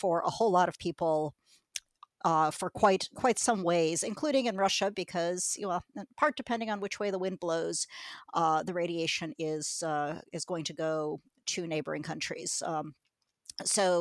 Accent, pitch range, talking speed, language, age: American, 160-200 Hz, 180 wpm, English, 50-69